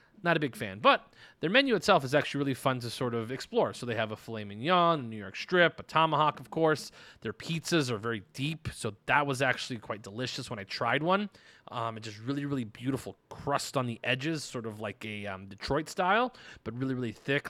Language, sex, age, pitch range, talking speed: English, male, 30-49, 120-160 Hz, 225 wpm